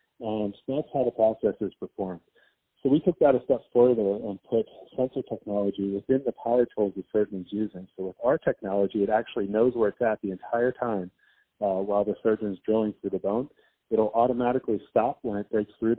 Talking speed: 205 wpm